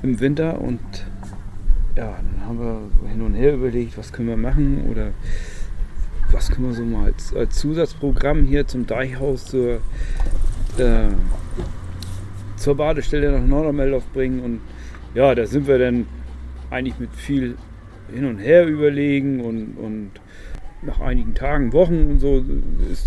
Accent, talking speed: German, 145 wpm